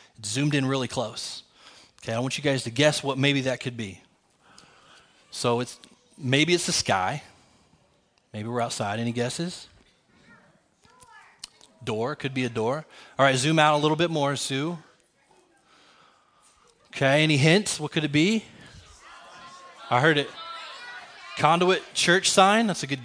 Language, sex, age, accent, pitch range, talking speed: English, male, 20-39, American, 130-165 Hz, 150 wpm